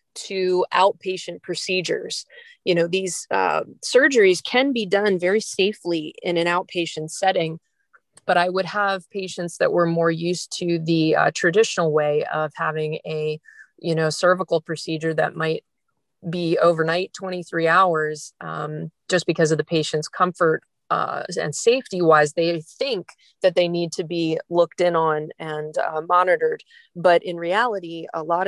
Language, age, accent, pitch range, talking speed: English, 30-49, American, 160-190 Hz, 150 wpm